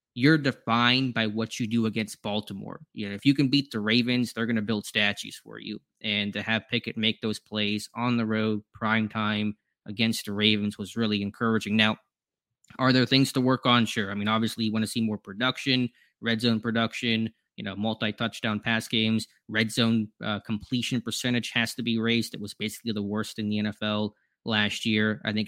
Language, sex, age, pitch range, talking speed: English, male, 20-39, 110-120 Hz, 205 wpm